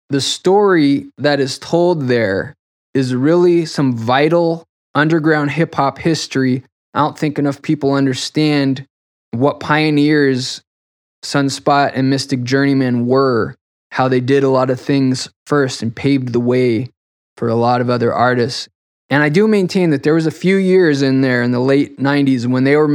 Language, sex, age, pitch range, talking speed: English, male, 20-39, 130-155 Hz, 165 wpm